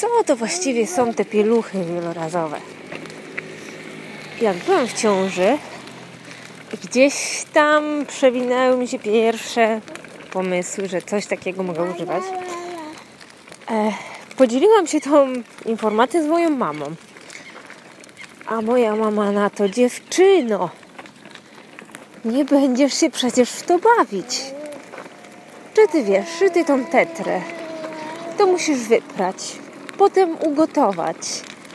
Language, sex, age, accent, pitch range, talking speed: English, female, 20-39, Polish, 205-315 Hz, 105 wpm